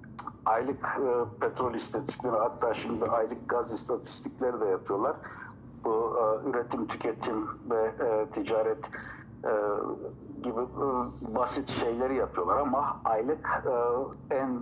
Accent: native